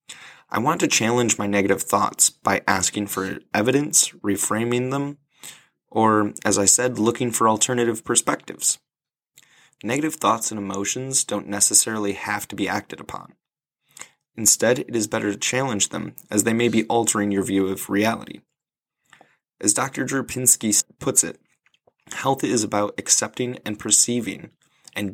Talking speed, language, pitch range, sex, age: 145 wpm, English, 100-120 Hz, male, 20-39